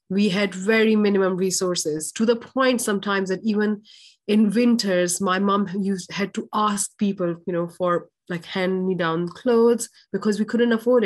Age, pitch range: 30-49, 200-240 Hz